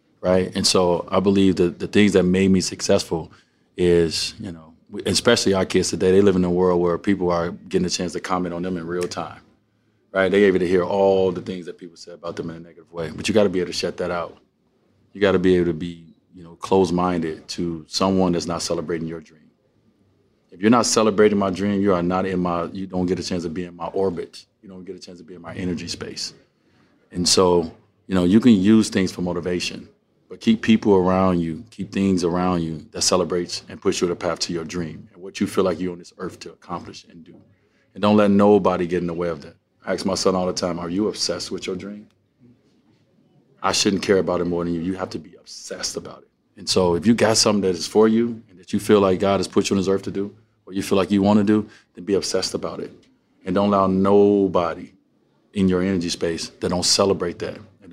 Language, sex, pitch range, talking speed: English, male, 85-100 Hz, 255 wpm